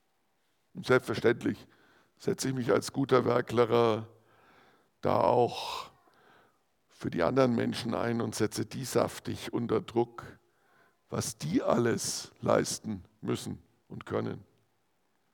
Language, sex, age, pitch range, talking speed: German, male, 60-79, 120-135 Hz, 110 wpm